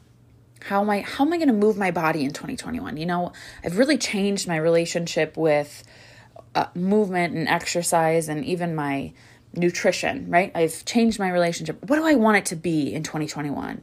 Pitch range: 155-200 Hz